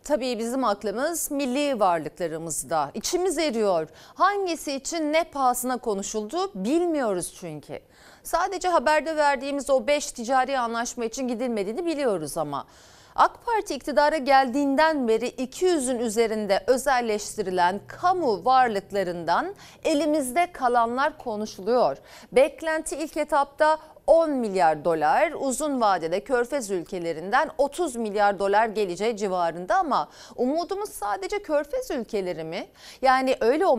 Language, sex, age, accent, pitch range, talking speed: Turkish, female, 40-59, native, 205-310 Hz, 110 wpm